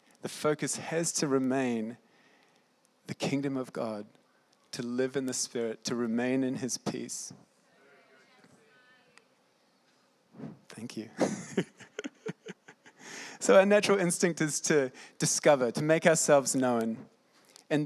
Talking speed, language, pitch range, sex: 110 wpm, English, 125-150 Hz, male